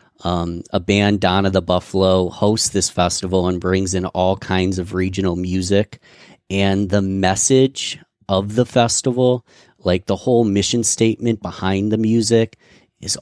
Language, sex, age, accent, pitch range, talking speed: English, male, 30-49, American, 95-105 Hz, 145 wpm